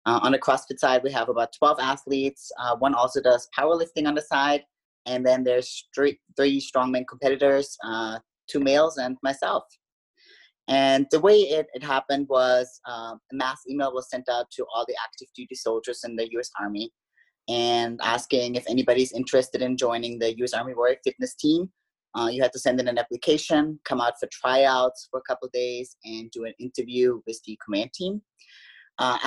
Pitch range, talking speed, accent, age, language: 125-140 Hz, 190 wpm, American, 20-39, English